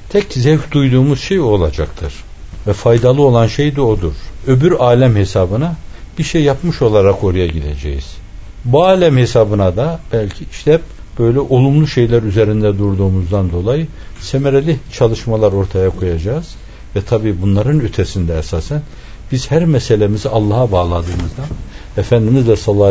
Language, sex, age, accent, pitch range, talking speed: Turkish, male, 60-79, native, 95-130 Hz, 125 wpm